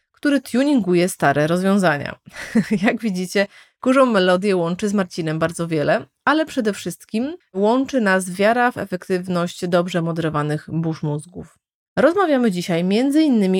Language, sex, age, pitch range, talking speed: Polish, female, 30-49, 175-255 Hz, 130 wpm